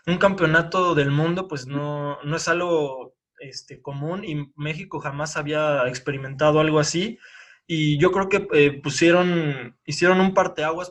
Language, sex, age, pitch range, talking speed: Spanish, male, 20-39, 145-175 Hz, 150 wpm